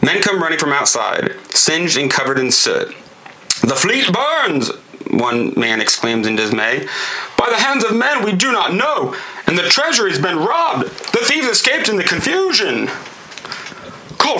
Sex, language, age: male, English, 30-49